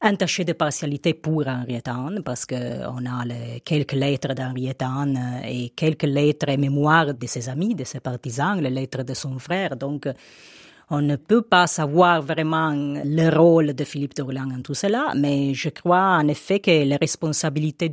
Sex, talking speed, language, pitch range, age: female, 180 wpm, French, 130-165 Hz, 30-49